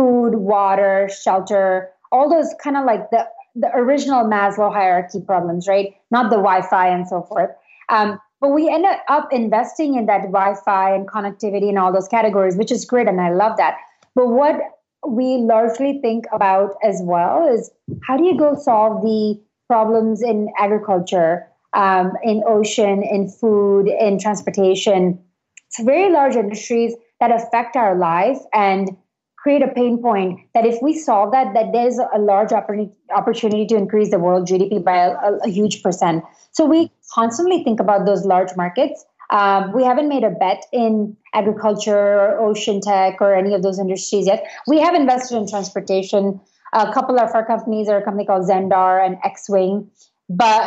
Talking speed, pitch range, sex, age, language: 170 wpm, 195-235 Hz, female, 30-49, English